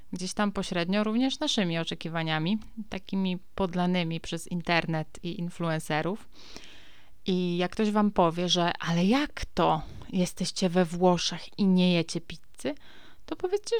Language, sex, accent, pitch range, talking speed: Polish, female, native, 165-195 Hz, 130 wpm